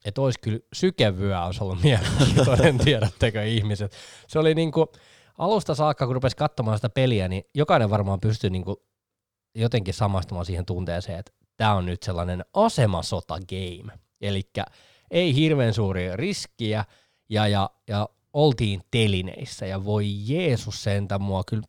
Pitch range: 100-130 Hz